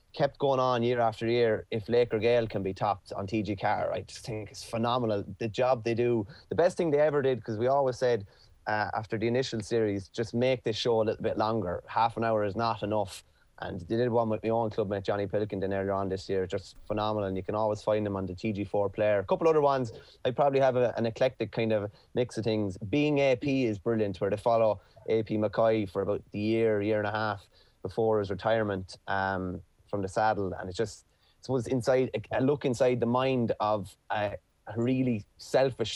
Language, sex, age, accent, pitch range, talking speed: English, male, 20-39, Irish, 105-120 Hz, 225 wpm